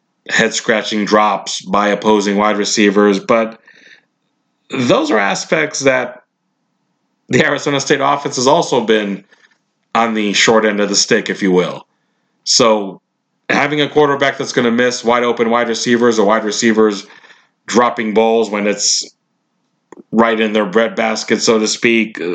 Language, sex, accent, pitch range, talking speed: English, male, American, 105-120 Hz, 150 wpm